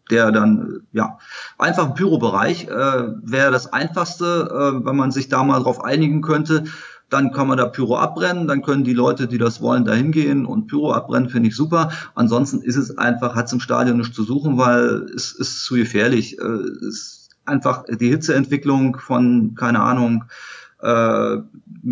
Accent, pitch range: German, 115-140 Hz